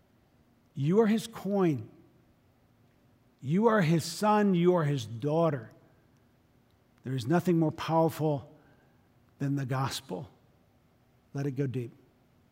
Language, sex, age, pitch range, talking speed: English, male, 50-69, 140-175 Hz, 115 wpm